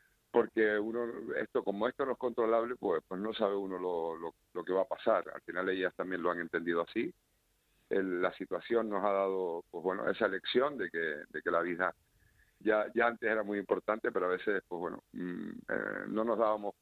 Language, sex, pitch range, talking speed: Spanish, male, 90-110 Hz, 215 wpm